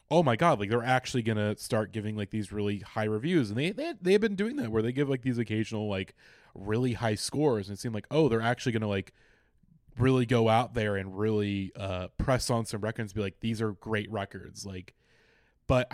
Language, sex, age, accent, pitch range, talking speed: English, male, 20-39, American, 105-135 Hz, 230 wpm